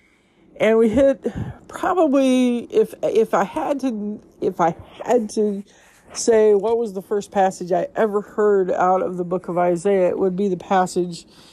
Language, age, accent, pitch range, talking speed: English, 50-69, American, 180-225 Hz, 170 wpm